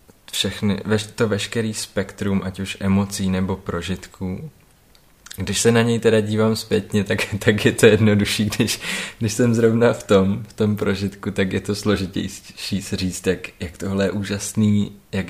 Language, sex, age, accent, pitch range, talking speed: Czech, male, 20-39, native, 95-110 Hz, 165 wpm